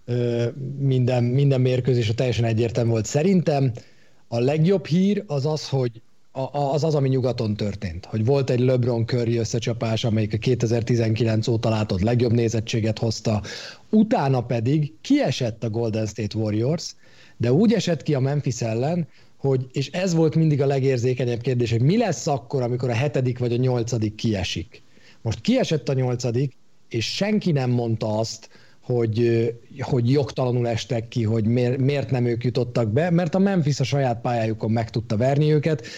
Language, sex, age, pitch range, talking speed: Hungarian, male, 40-59, 115-145 Hz, 160 wpm